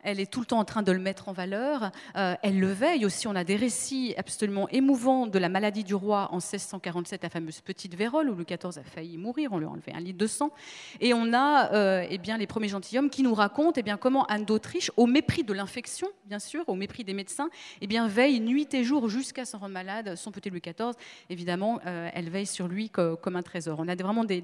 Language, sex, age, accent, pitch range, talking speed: French, female, 30-49, French, 185-250 Hz, 250 wpm